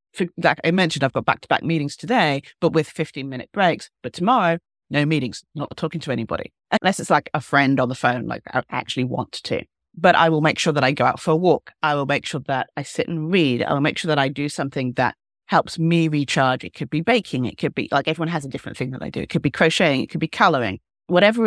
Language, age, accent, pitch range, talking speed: English, 40-59, British, 135-175 Hz, 255 wpm